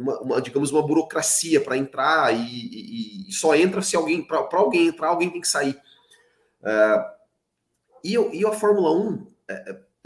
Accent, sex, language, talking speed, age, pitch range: Brazilian, male, Portuguese, 175 wpm, 30-49, 135-210 Hz